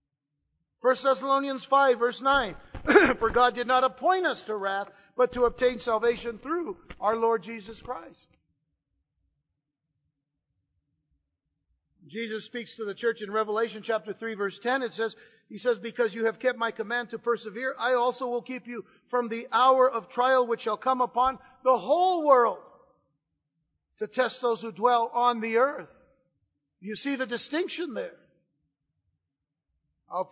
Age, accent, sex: 50-69, American, male